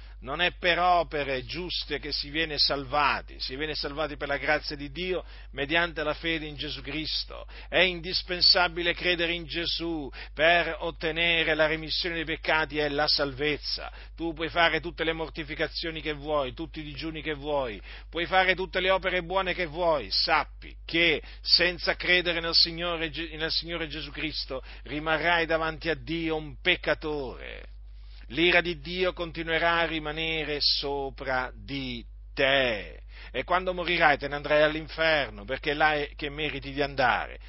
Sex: male